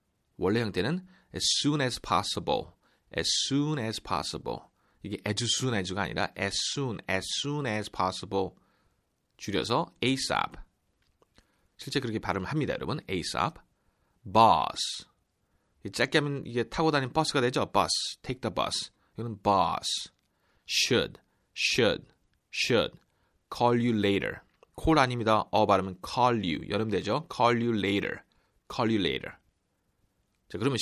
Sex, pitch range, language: male, 100-145 Hz, Korean